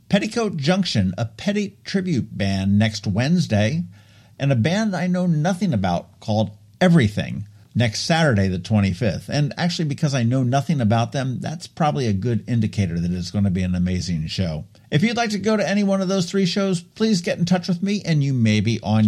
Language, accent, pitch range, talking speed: English, American, 105-165 Hz, 205 wpm